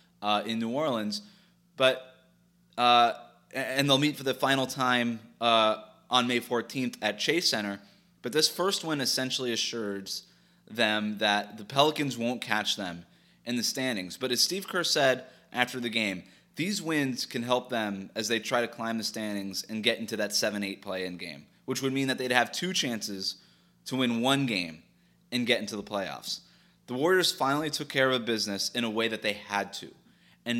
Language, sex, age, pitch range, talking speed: English, male, 20-39, 110-145 Hz, 190 wpm